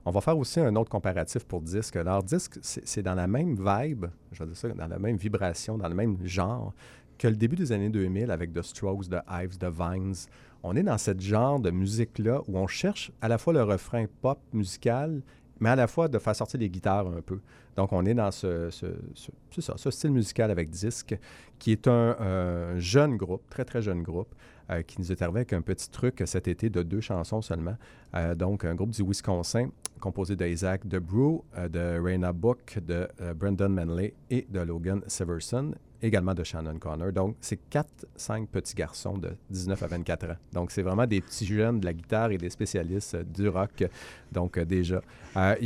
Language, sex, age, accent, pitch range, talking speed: French, male, 40-59, Canadian, 90-115 Hz, 220 wpm